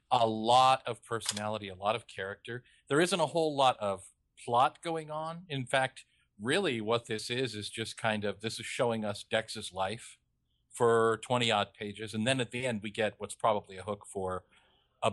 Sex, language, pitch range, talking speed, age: male, English, 100-120 Hz, 195 wpm, 40-59